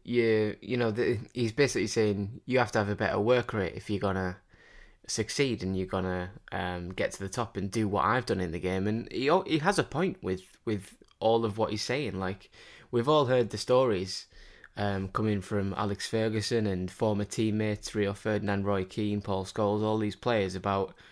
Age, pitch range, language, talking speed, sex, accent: 20-39, 95-110 Hz, English, 215 wpm, male, British